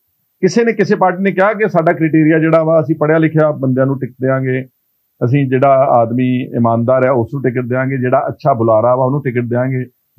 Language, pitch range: Punjabi, 130-165 Hz